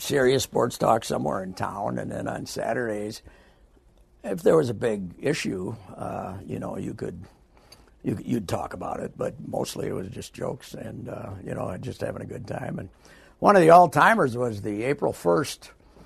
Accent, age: American, 60-79